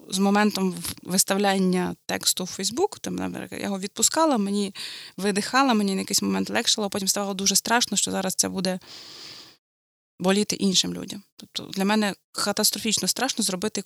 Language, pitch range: Ukrainian, 175-210 Hz